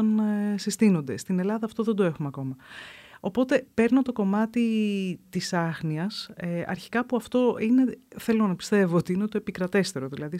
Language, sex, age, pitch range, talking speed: Greek, female, 30-49, 180-225 Hz, 150 wpm